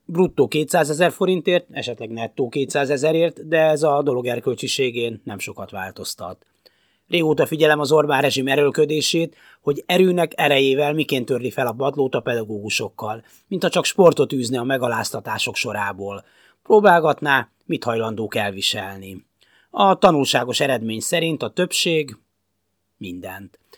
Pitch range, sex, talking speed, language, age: 115-155 Hz, male, 125 wpm, Hungarian, 30-49